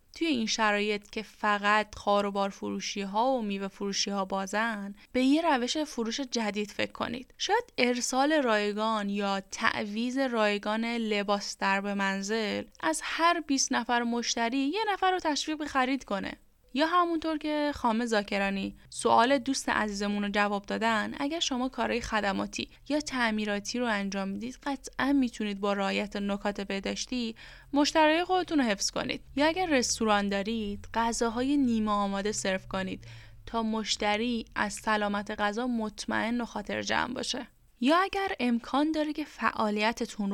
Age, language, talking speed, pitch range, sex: 10-29, Persian, 145 wpm, 205-270 Hz, female